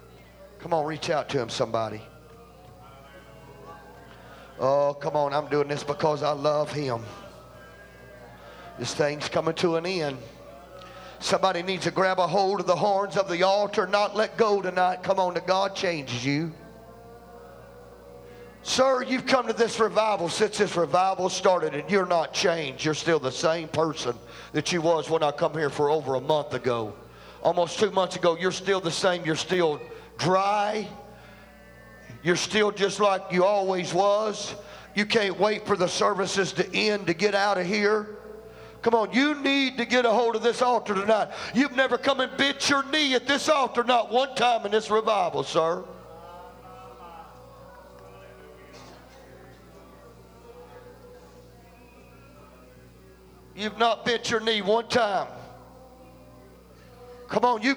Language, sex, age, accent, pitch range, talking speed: English, male, 40-59, American, 150-215 Hz, 150 wpm